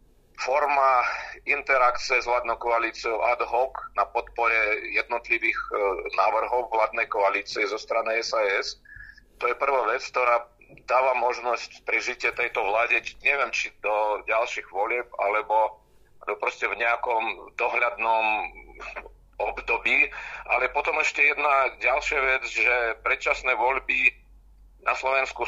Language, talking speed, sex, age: Czech, 120 wpm, male, 40-59